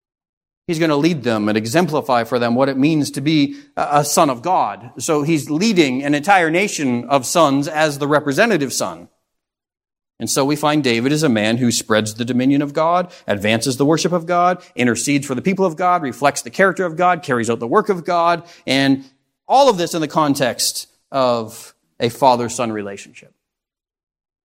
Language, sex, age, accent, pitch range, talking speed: English, male, 40-59, American, 115-145 Hz, 190 wpm